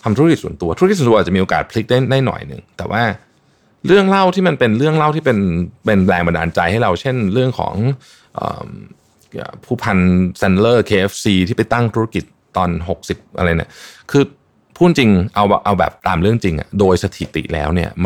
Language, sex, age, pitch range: Thai, male, 20-39, 90-125 Hz